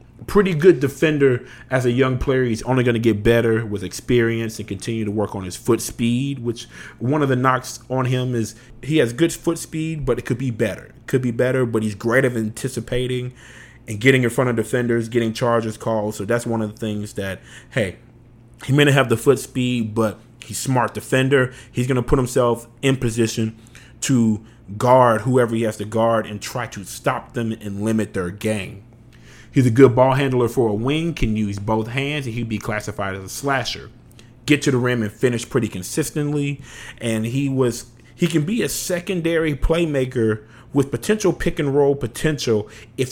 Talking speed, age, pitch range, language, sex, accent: 200 wpm, 30-49, 115-135 Hz, English, male, American